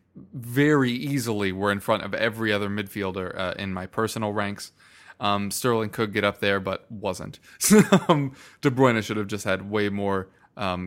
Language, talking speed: English, 170 wpm